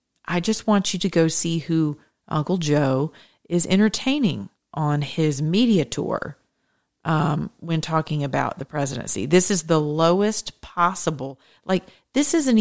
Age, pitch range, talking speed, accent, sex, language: 40-59, 150-185 Hz, 145 wpm, American, female, English